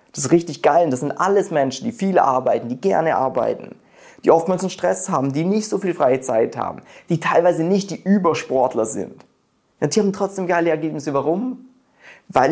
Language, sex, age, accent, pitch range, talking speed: German, male, 20-39, German, 130-180 Hz, 190 wpm